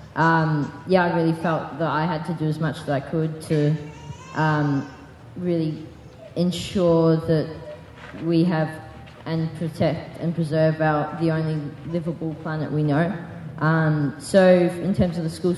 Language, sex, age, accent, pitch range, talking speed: English, female, 20-39, Australian, 150-165 Hz, 155 wpm